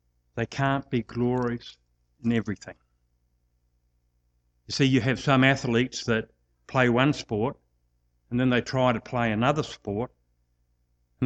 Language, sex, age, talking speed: English, male, 60-79, 135 wpm